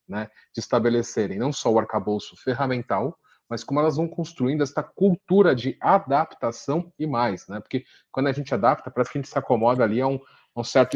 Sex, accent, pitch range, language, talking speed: male, Brazilian, 110-140 Hz, Portuguese, 205 wpm